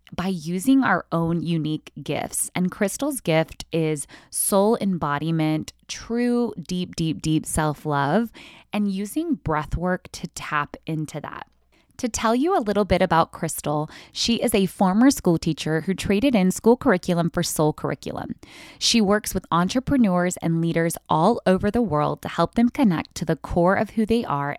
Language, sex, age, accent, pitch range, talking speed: English, female, 20-39, American, 160-210 Hz, 165 wpm